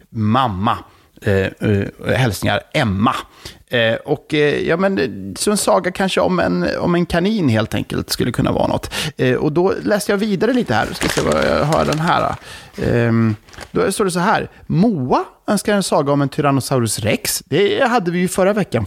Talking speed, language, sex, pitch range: 190 wpm, Swedish, male, 120-195 Hz